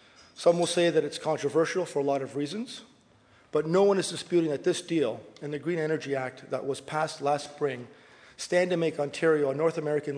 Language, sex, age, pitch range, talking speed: English, male, 40-59, 140-165 Hz, 210 wpm